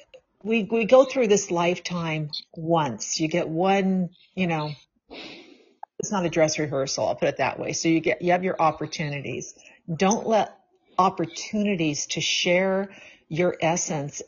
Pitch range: 160-205 Hz